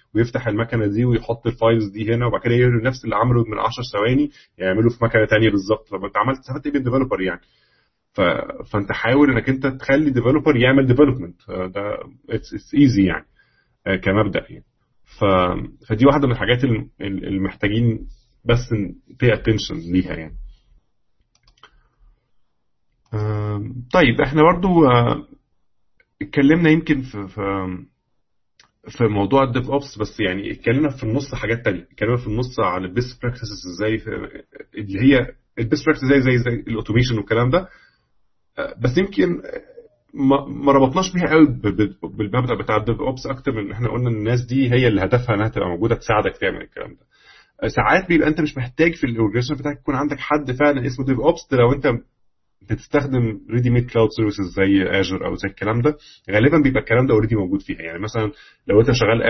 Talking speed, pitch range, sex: 155 wpm, 105-135 Hz, male